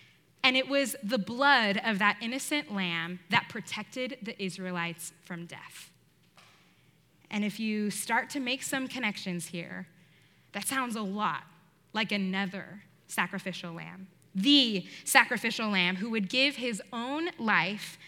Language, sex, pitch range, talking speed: English, female, 190-265 Hz, 135 wpm